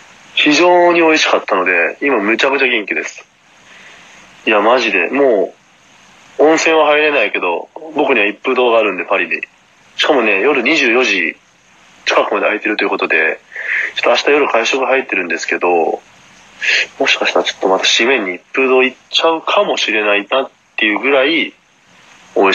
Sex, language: male, Japanese